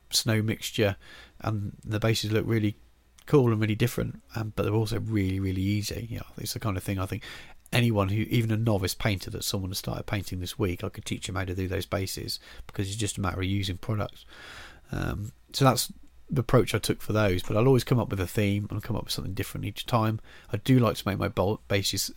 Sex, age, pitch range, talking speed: male, 40-59, 95-115 Hz, 245 wpm